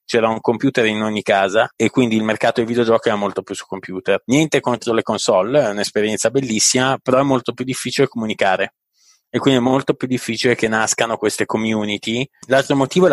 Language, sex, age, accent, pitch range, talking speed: Italian, male, 30-49, native, 100-120 Hz, 195 wpm